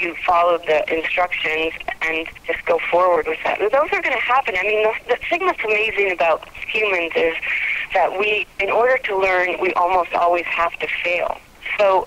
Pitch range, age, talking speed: 170-210 Hz, 40-59, 190 wpm